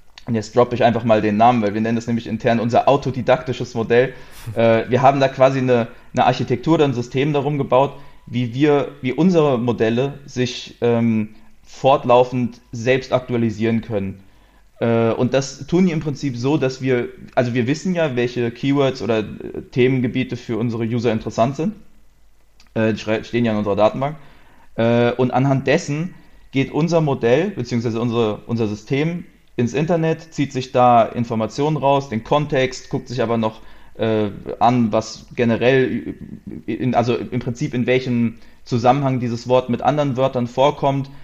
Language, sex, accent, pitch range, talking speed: German, male, German, 115-135 Hz, 160 wpm